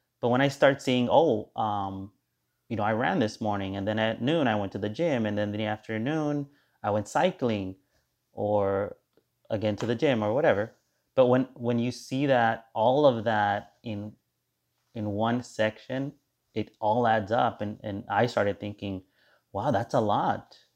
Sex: male